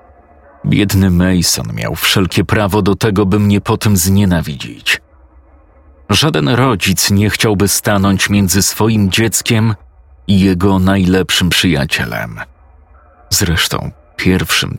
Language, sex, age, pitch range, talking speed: Polish, male, 40-59, 80-105 Hz, 105 wpm